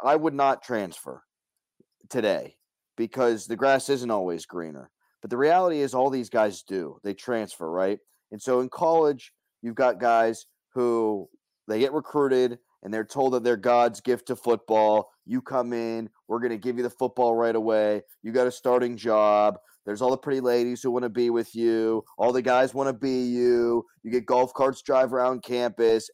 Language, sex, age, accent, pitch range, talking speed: English, male, 30-49, American, 120-155 Hz, 195 wpm